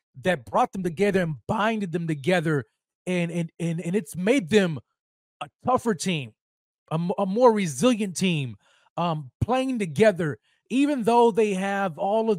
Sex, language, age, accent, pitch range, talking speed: male, English, 30-49, American, 170-220 Hz, 160 wpm